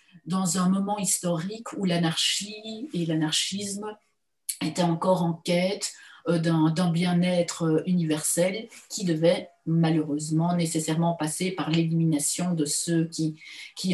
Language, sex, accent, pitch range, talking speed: French, female, French, 165-185 Hz, 115 wpm